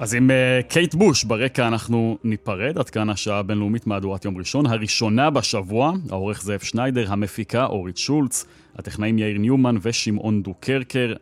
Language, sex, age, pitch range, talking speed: Hebrew, male, 30-49, 100-130 Hz, 155 wpm